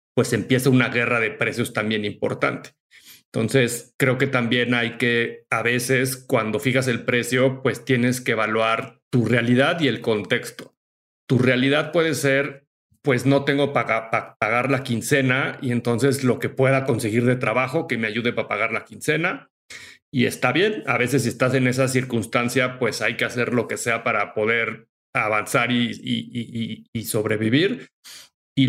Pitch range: 120-135 Hz